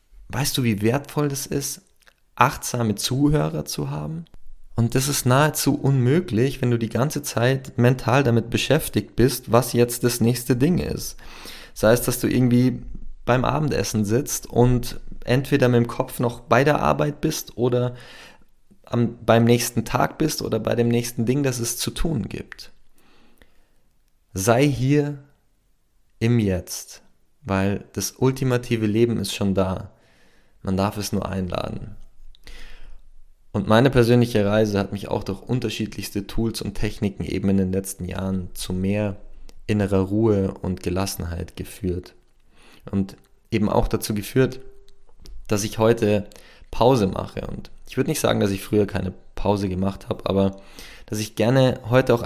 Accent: German